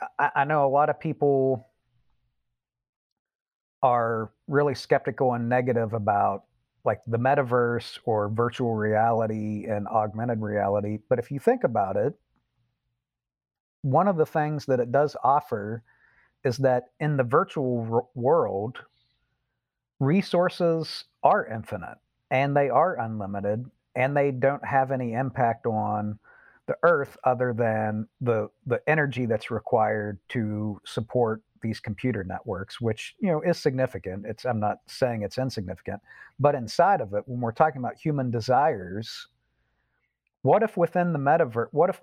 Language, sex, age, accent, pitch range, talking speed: English, male, 40-59, American, 110-130 Hz, 135 wpm